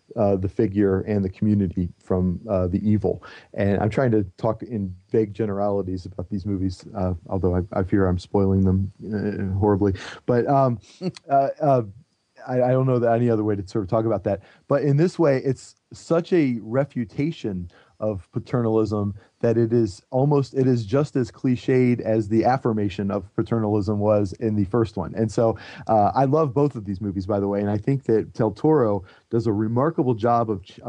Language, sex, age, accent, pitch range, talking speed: English, male, 30-49, American, 100-120 Hz, 195 wpm